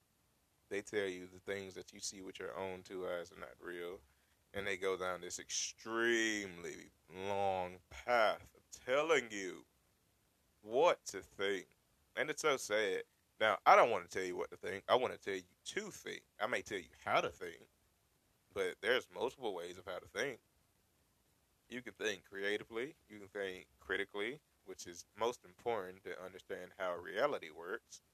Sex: male